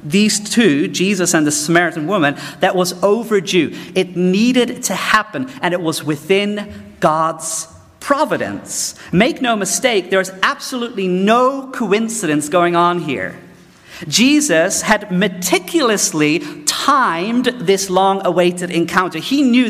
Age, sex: 40-59, male